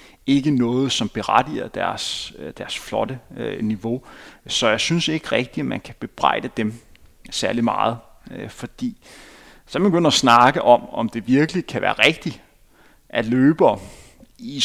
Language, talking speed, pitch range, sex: Danish, 160 wpm, 120-165 Hz, male